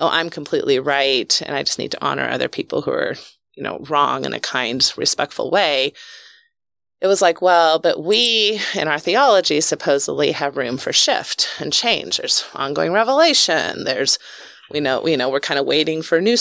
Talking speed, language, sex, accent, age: 185 wpm, English, female, American, 30-49